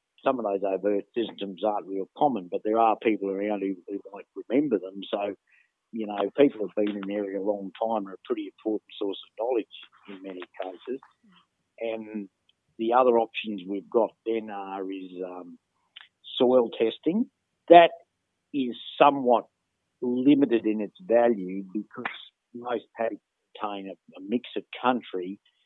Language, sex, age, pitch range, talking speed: English, male, 50-69, 95-115 Hz, 160 wpm